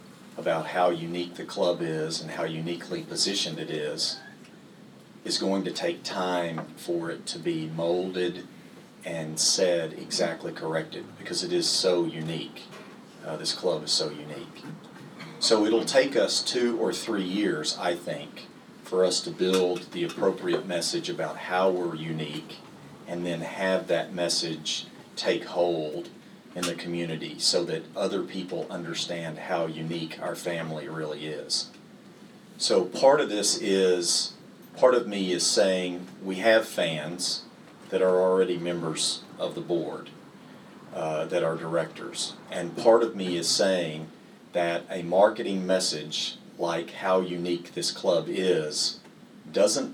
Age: 40-59